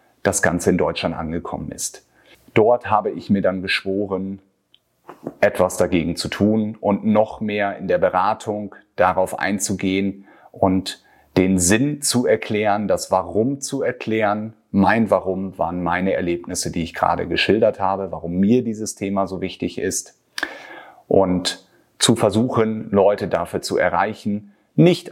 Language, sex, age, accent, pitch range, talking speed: German, male, 30-49, German, 95-110 Hz, 140 wpm